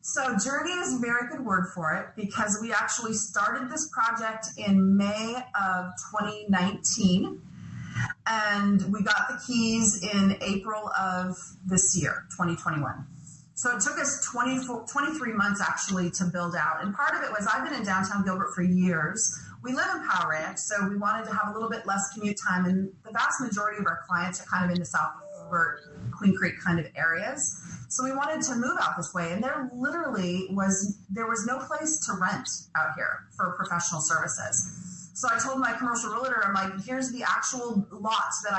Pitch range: 185-230 Hz